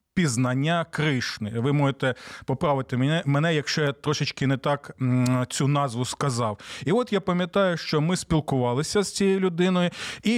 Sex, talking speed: male, 145 wpm